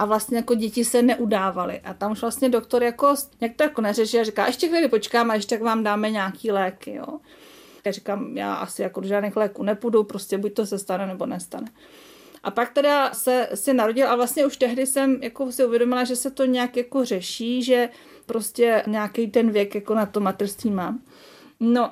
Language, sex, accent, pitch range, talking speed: Czech, female, native, 205-245 Hz, 205 wpm